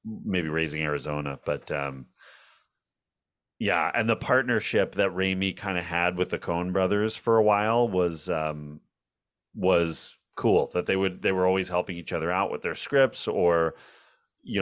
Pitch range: 80-105 Hz